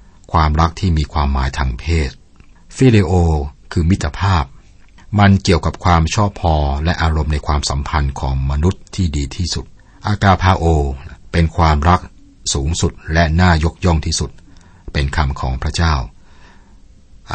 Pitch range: 70-90 Hz